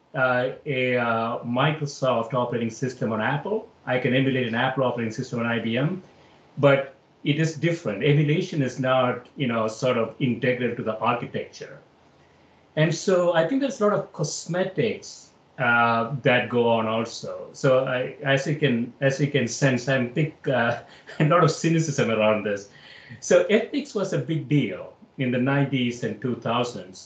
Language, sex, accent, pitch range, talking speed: English, male, Indian, 120-155 Hz, 165 wpm